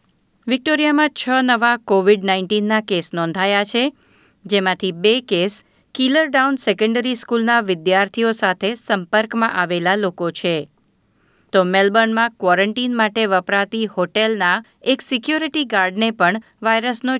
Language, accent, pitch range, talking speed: Gujarati, native, 185-235 Hz, 110 wpm